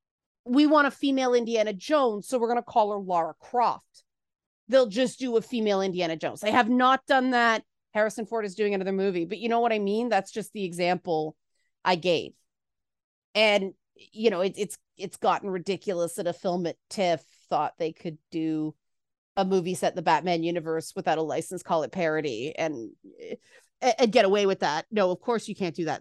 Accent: American